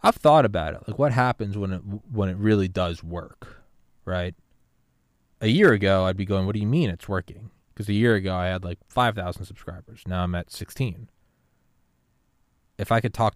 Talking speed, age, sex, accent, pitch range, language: 200 wpm, 20-39, male, American, 90-105 Hz, English